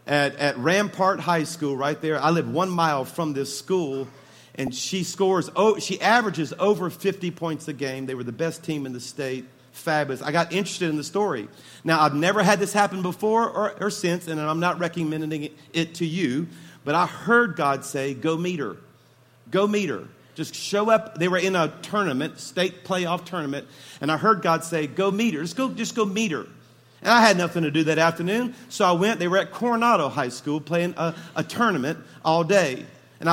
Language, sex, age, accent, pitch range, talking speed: English, male, 50-69, American, 155-205 Hz, 210 wpm